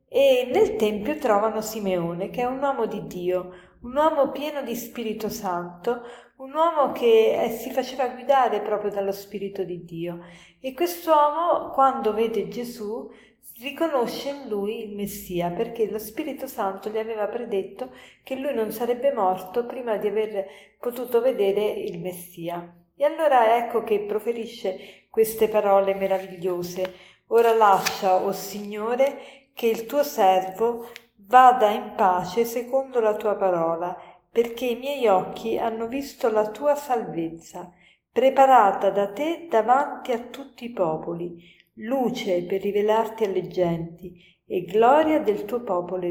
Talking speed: 140 wpm